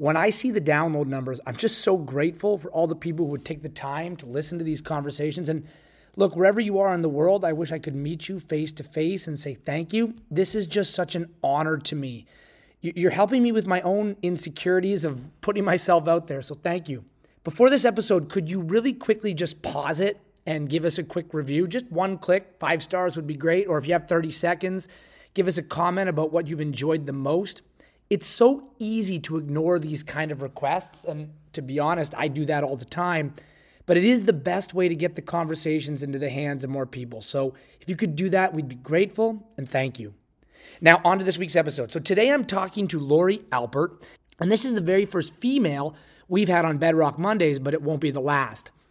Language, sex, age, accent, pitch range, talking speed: English, male, 30-49, American, 150-190 Hz, 230 wpm